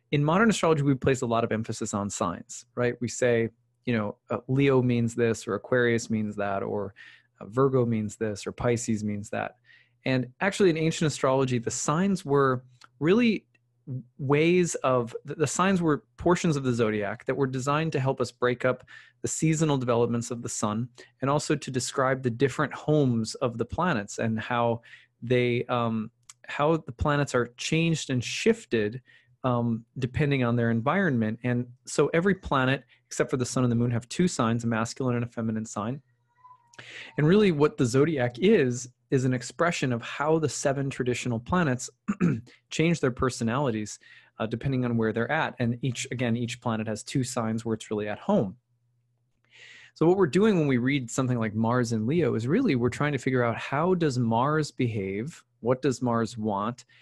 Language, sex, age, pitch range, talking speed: English, male, 20-39, 115-145 Hz, 180 wpm